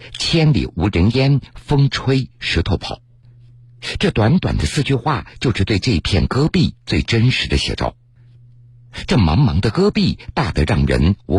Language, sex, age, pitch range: Chinese, male, 50-69, 100-125 Hz